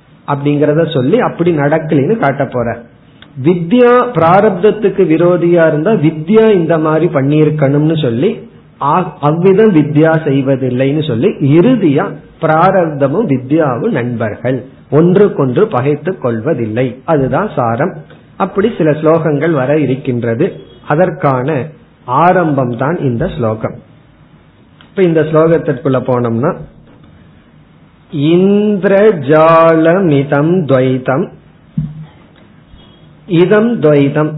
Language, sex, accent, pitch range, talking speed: Tamil, male, native, 135-175 Hz, 80 wpm